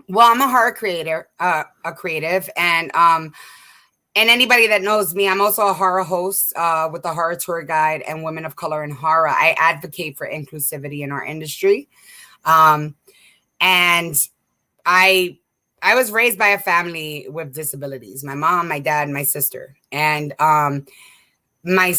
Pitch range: 150-200 Hz